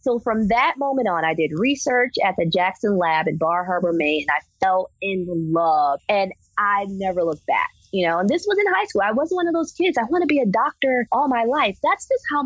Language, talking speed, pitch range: English, 250 wpm, 175-280 Hz